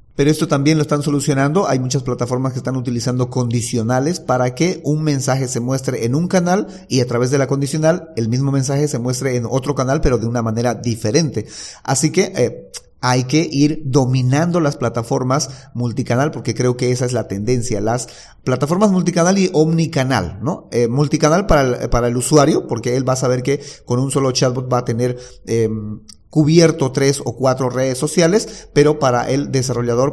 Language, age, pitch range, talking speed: Spanish, 40-59, 120-150 Hz, 185 wpm